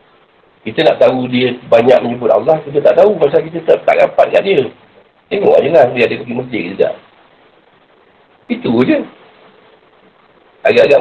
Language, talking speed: Malay, 160 wpm